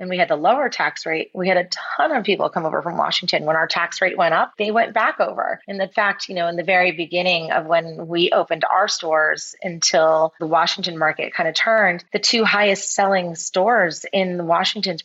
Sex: female